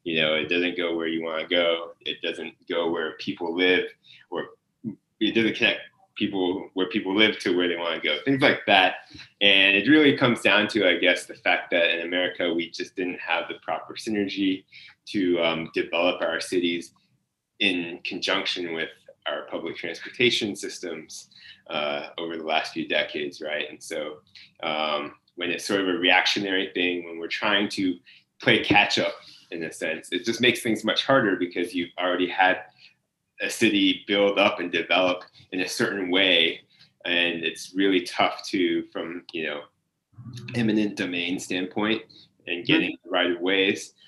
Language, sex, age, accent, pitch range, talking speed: English, male, 20-39, American, 90-110 Hz, 175 wpm